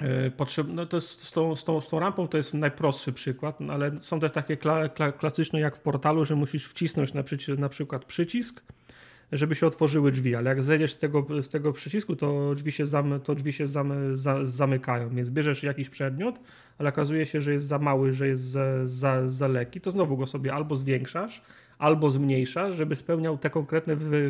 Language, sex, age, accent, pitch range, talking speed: Polish, male, 30-49, native, 135-155 Hz, 200 wpm